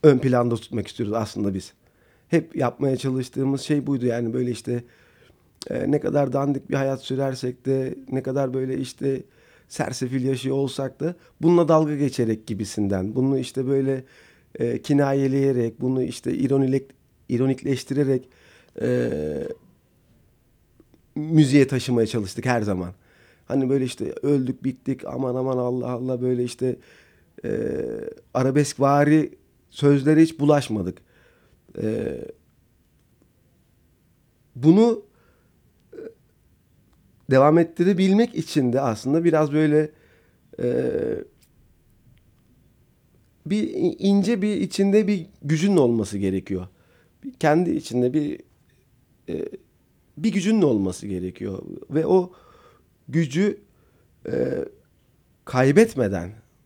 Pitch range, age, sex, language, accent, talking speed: 120-150 Hz, 40-59, male, Turkish, native, 100 wpm